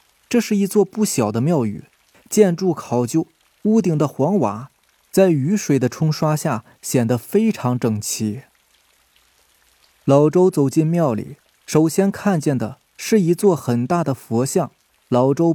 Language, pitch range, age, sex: Chinese, 120-180 Hz, 20-39, male